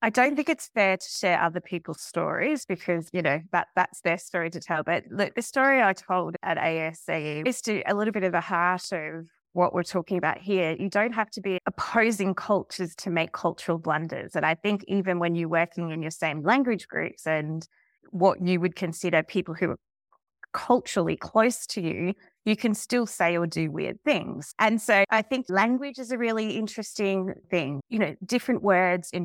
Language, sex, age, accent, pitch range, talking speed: English, female, 20-39, Australian, 170-215 Hz, 200 wpm